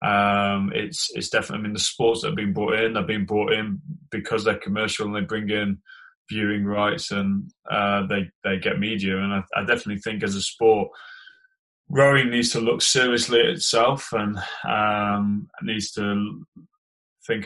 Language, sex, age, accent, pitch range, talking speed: English, male, 20-39, British, 100-115 Hz, 180 wpm